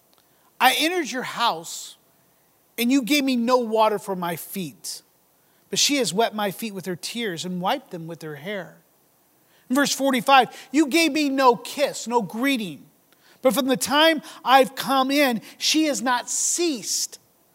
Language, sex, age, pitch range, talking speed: English, male, 40-59, 190-270 Hz, 165 wpm